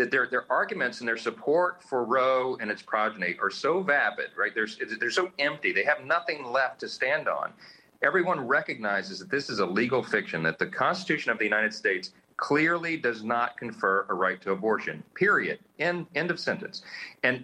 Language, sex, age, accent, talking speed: English, male, 40-59, American, 195 wpm